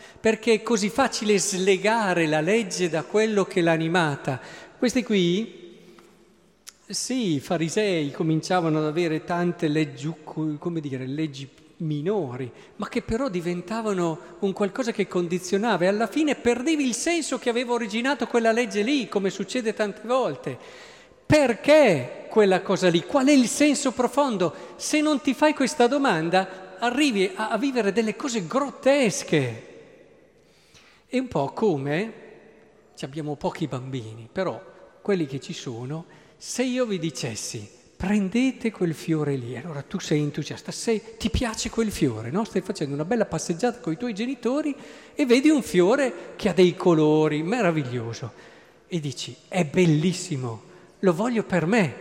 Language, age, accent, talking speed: Italian, 50-69, native, 150 wpm